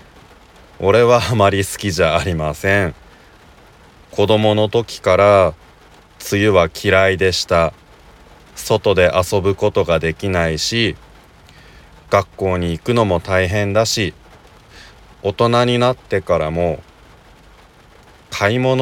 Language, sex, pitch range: Japanese, male, 85-110 Hz